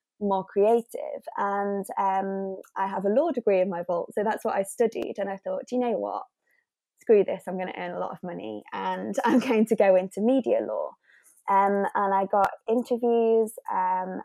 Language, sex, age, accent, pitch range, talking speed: English, female, 20-39, British, 190-230 Hz, 200 wpm